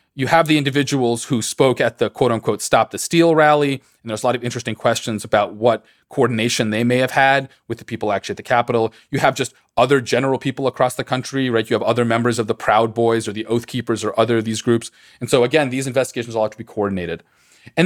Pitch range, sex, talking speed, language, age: 115-140 Hz, male, 240 wpm, English, 30-49